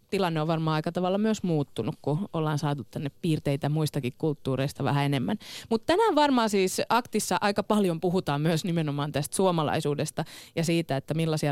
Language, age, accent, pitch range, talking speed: Finnish, 20-39, native, 145-210 Hz, 165 wpm